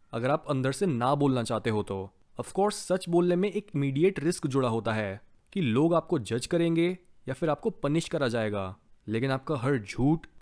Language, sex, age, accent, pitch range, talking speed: Hindi, male, 20-39, native, 125-175 Hz, 200 wpm